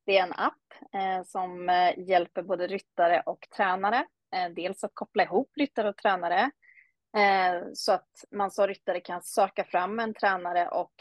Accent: Swedish